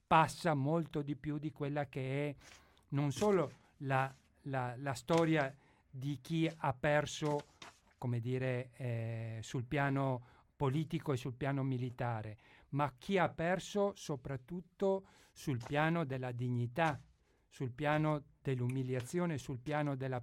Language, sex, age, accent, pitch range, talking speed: Italian, male, 50-69, native, 125-155 Hz, 130 wpm